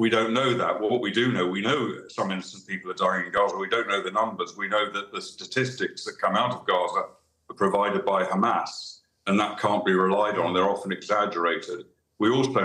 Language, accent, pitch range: English, British, 95-110 Hz